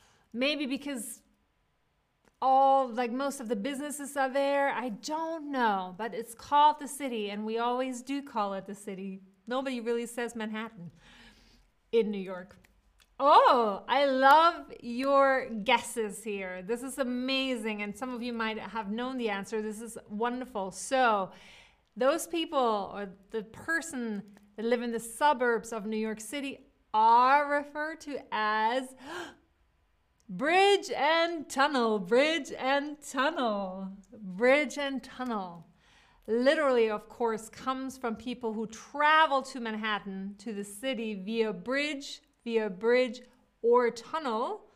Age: 30-49